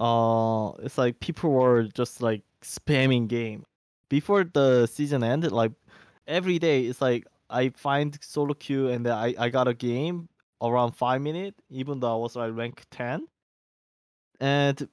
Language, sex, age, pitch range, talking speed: English, male, 20-39, 120-150 Hz, 155 wpm